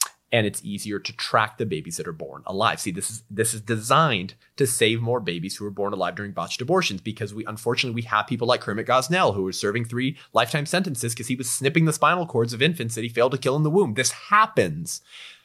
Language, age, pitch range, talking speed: English, 30-49, 100-155 Hz, 240 wpm